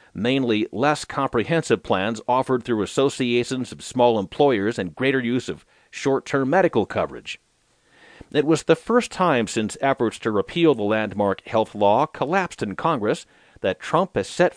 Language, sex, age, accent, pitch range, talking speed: English, male, 40-59, American, 110-150 Hz, 150 wpm